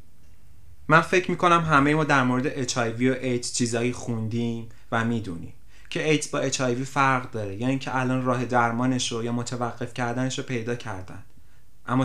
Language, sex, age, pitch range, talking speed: Persian, male, 30-49, 110-125 Hz, 165 wpm